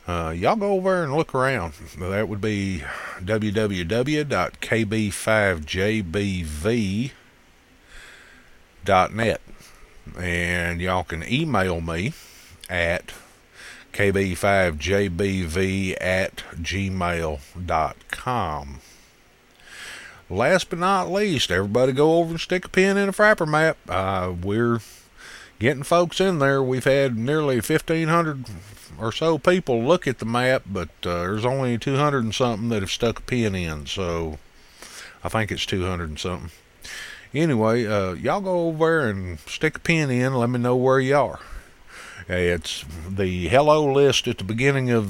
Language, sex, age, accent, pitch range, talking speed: English, male, 50-69, American, 90-130 Hz, 130 wpm